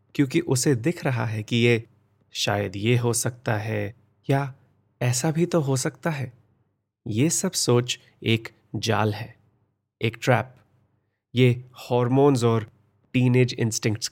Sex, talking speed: male, 135 wpm